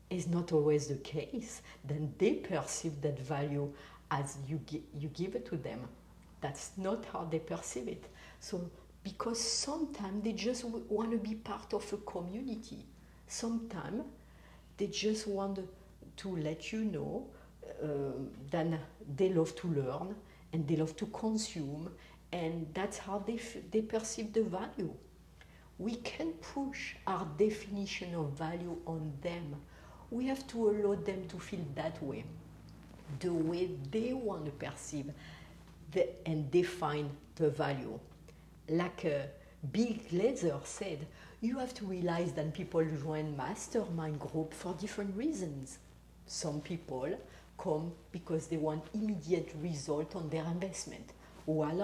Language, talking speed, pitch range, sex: English, 140 wpm, 155-215 Hz, female